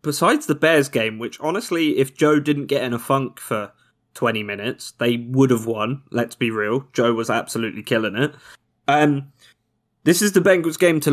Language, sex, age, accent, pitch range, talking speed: English, male, 20-39, British, 115-145 Hz, 190 wpm